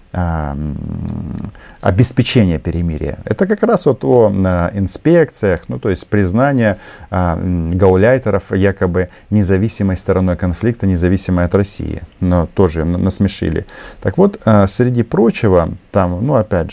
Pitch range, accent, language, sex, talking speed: 90-115 Hz, native, Russian, male, 110 wpm